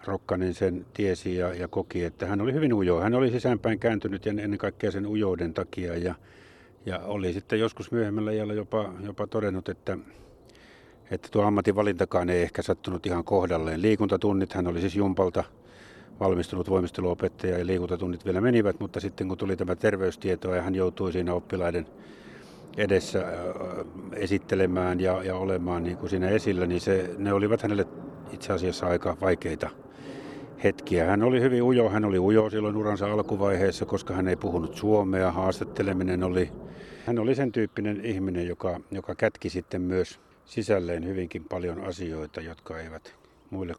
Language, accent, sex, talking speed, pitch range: Finnish, native, male, 160 wpm, 90-105 Hz